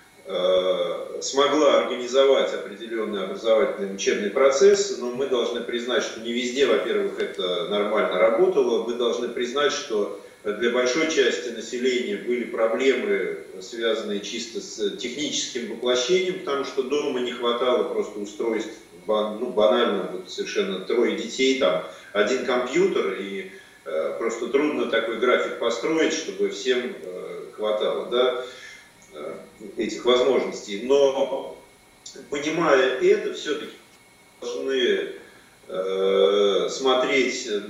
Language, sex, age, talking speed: Russian, male, 40-59, 105 wpm